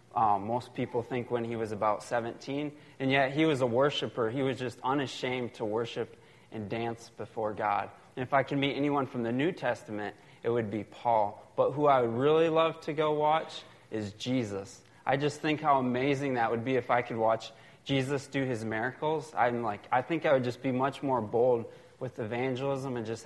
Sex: male